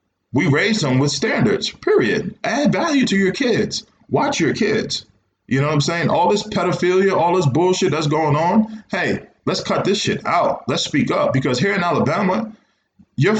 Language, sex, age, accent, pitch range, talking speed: English, male, 20-39, American, 120-185 Hz, 190 wpm